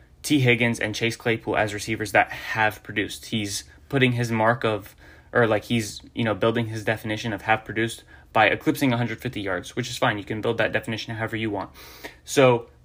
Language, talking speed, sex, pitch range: English, 195 wpm, male, 110-130 Hz